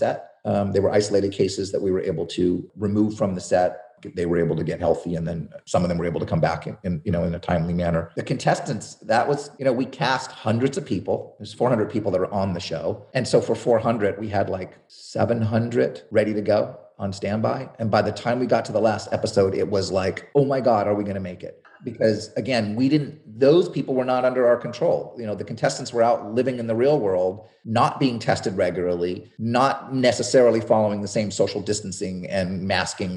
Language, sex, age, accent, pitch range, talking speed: English, male, 30-49, American, 95-120 Hz, 230 wpm